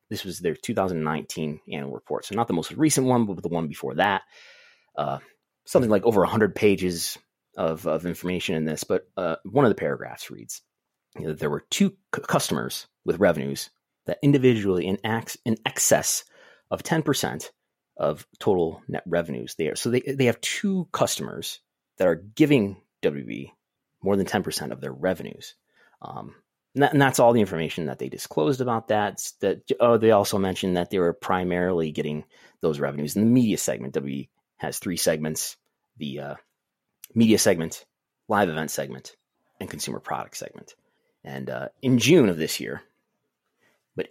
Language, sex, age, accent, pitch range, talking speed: English, male, 30-49, American, 80-125 Hz, 175 wpm